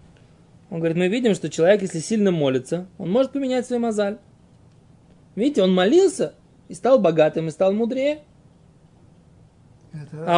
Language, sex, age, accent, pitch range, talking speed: Russian, male, 20-39, native, 175-235 Hz, 140 wpm